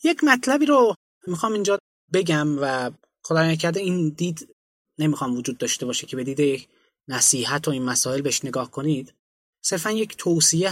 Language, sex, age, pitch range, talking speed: Persian, male, 20-39, 135-170 Hz, 155 wpm